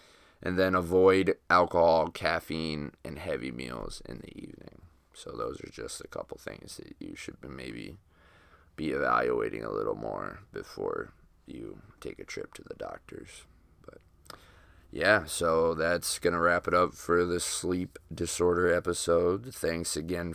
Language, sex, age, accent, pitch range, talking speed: English, male, 20-39, American, 85-95 Hz, 150 wpm